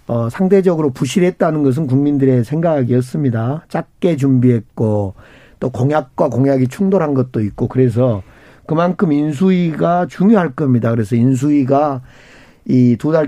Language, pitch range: Korean, 125-170 Hz